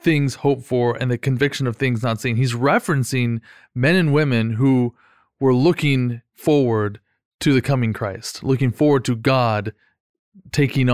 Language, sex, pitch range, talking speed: English, male, 115-135 Hz, 155 wpm